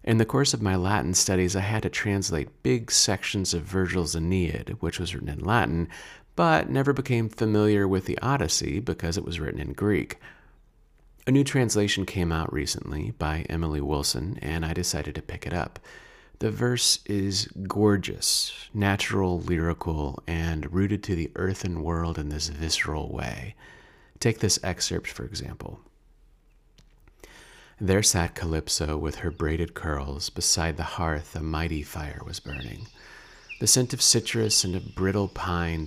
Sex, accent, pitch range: male, American, 80-100 Hz